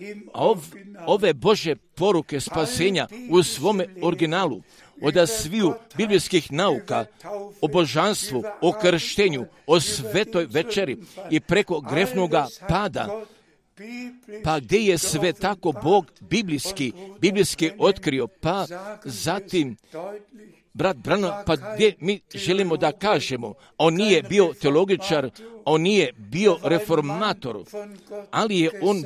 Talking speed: 105 wpm